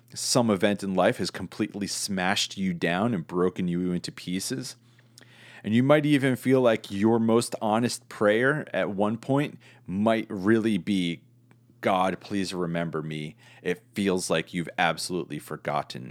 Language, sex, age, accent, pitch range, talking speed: English, male, 30-49, American, 100-125 Hz, 150 wpm